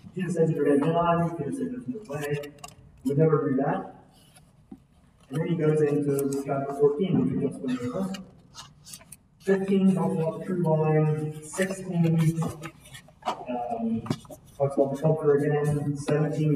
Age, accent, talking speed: 30-49, American, 145 wpm